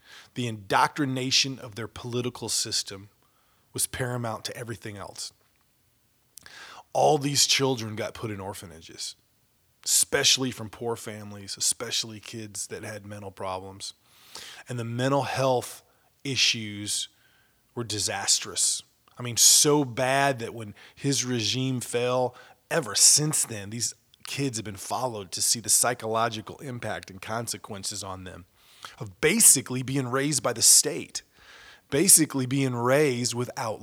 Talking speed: 130 wpm